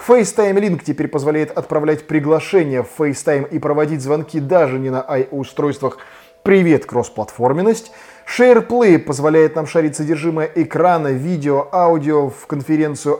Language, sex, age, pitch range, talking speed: Russian, male, 20-39, 140-190 Hz, 120 wpm